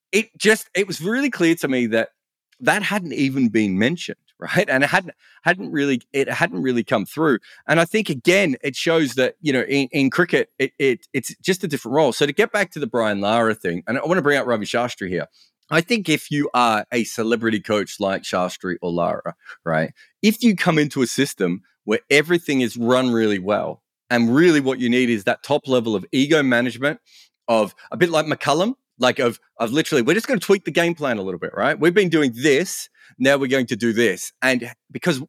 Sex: male